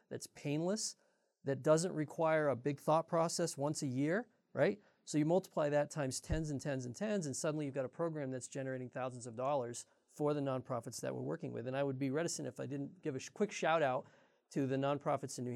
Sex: male